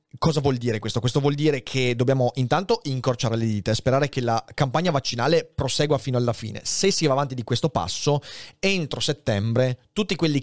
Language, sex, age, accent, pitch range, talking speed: Italian, male, 30-49, native, 115-155 Hz, 195 wpm